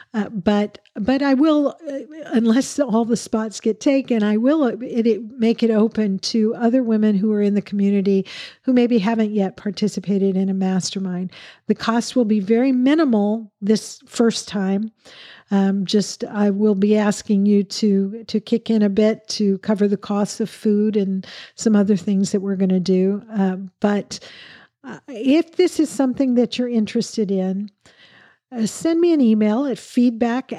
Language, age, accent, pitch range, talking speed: English, 50-69, American, 200-240 Hz, 170 wpm